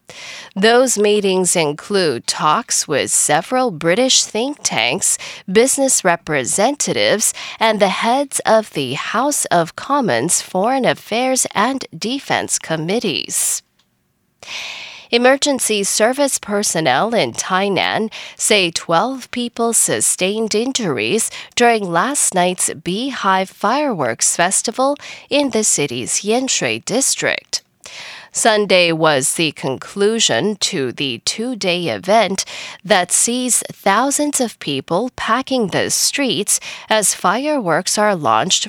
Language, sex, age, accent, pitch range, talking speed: English, female, 10-29, American, 180-255 Hz, 100 wpm